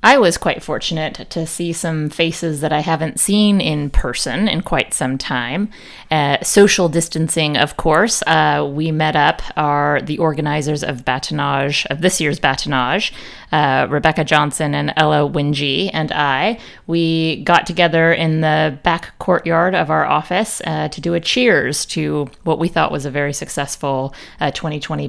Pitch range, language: 150-175 Hz, English